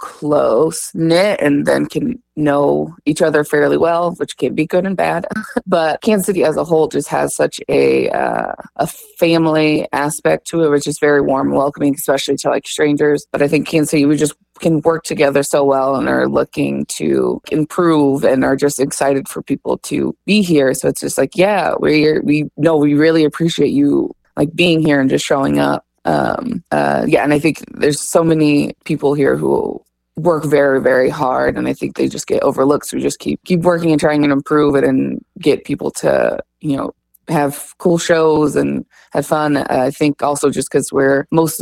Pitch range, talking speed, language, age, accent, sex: 140-160 Hz, 200 wpm, English, 20-39, American, female